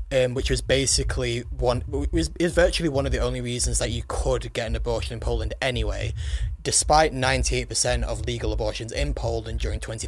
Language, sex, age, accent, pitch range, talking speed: English, male, 20-39, British, 80-125 Hz, 190 wpm